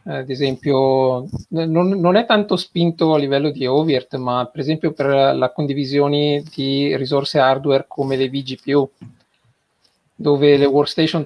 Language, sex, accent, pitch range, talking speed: Italian, male, native, 125-145 Hz, 140 wpm